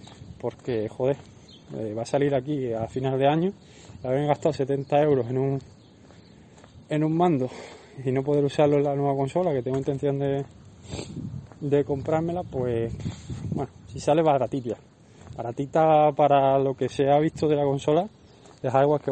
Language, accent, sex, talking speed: Spanish, Spanish, male, 165 wpm